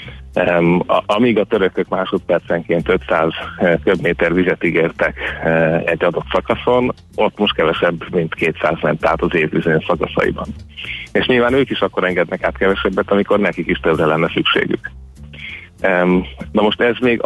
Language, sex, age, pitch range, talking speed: Hungarian, male, 30-49, 85-100 Hz, 145 wpm